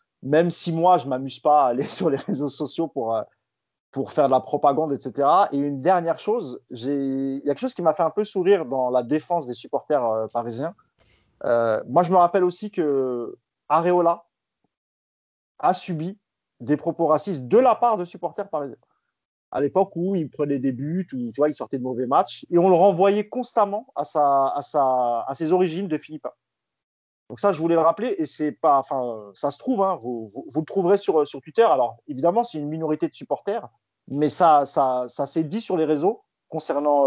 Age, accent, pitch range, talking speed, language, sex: 30-49, French, 140-190 Hz, 210 wpm, French, male